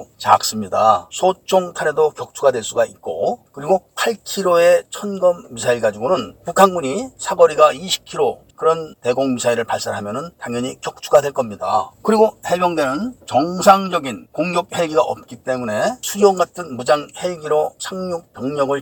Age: 40-59